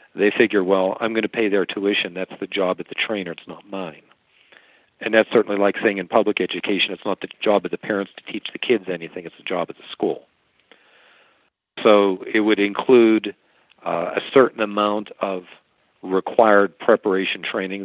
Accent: American